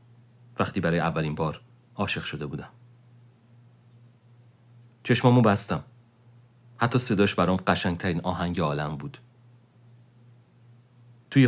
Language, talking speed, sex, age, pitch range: Persian, 90 wpm, male, 40-59, 100-120 Hz